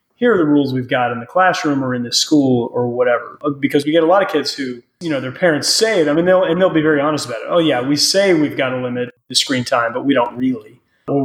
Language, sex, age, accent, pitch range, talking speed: English, male, 30-49, American, 135-160 Hz, 295 wpm